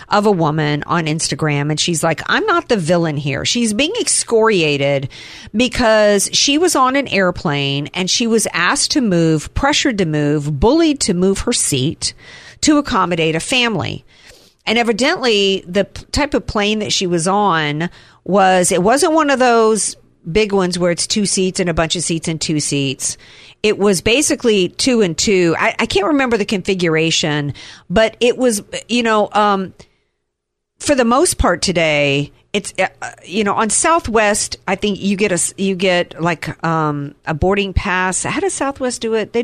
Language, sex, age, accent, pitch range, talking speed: English, female, 50-69, American, 160-225 Hz, 175 wpm